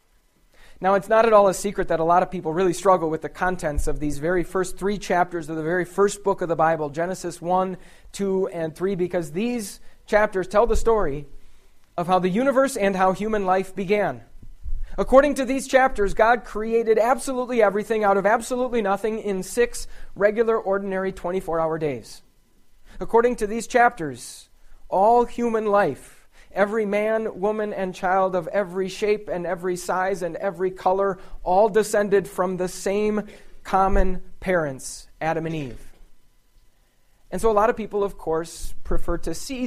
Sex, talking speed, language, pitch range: male, 170 wpm, English, 155-205 Hz